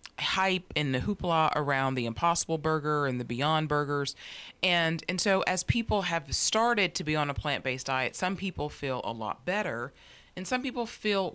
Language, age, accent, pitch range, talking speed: English, 30-49, American, 135-170 Hz, 185 wpm